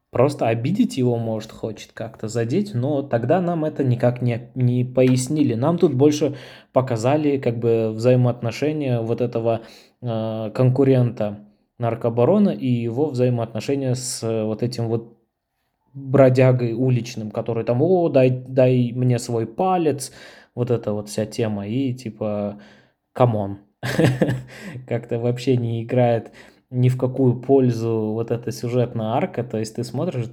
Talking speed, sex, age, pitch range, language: 135 wpm, male, 20-39, 110-130 Hz, Russian